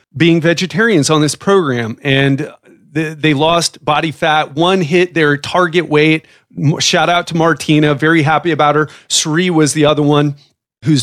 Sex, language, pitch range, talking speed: male, English, 140-170 Hz, 160 wpm